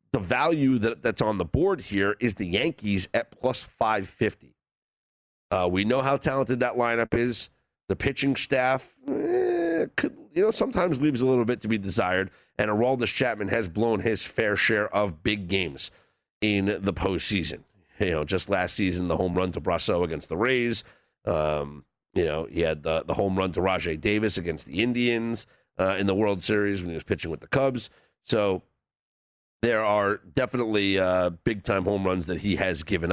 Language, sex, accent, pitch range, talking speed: English, male, American, 95-120 Hz, 185 wpm